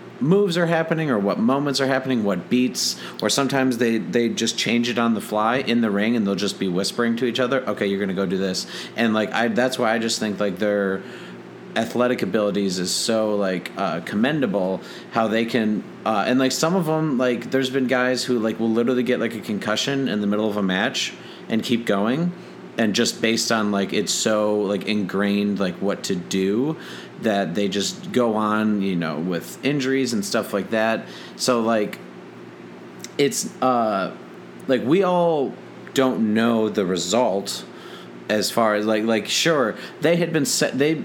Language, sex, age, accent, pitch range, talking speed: English, male, 30-49, American, 100-125 Hz, 195 wpm